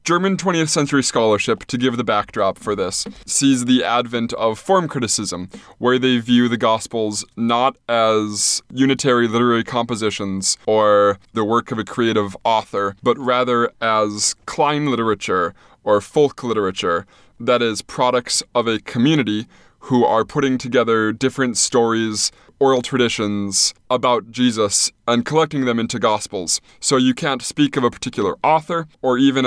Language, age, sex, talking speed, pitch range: English, 20-39, male, 145 wpm, 110-135 Hz